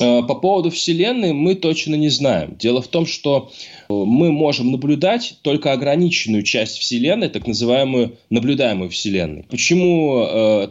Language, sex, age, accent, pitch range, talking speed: Russian, male, 20-39, native, 110-165 Hz, 135 wpm